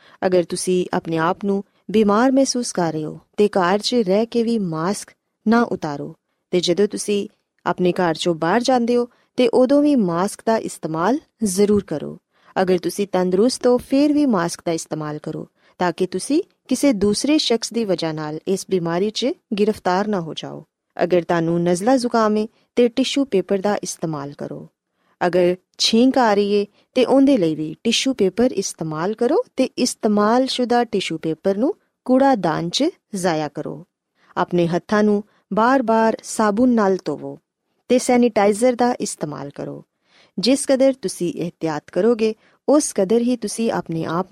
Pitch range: 175-245 Hz